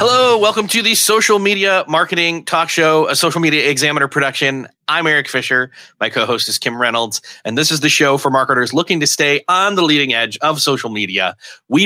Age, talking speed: 30-49, 200 wpm